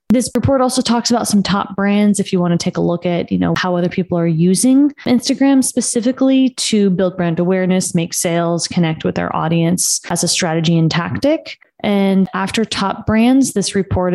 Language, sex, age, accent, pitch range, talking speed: English, female, 20-39, American, 165-195 Hz, 195 wpm